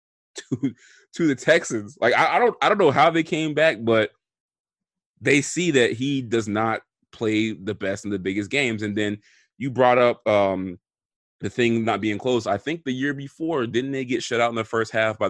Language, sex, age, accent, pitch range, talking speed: English, male, 20-39, American, 100-130 Hz, 215 wpm